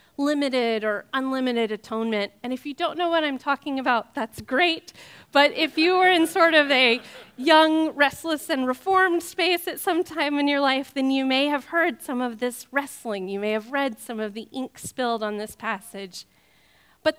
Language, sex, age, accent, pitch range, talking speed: English, female, 30-49, American, 220-300 Hz, 195 wpm